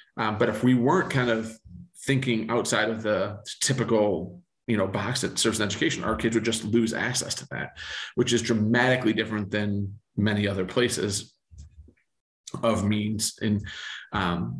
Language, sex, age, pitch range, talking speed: English, male, 30-49, 105-120 Hz, 155 wpm